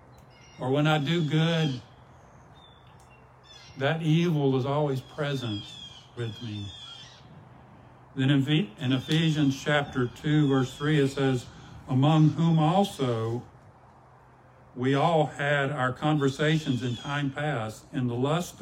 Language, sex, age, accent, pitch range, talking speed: English, male, 60-79, American, 120-150 Hz, 115 wpm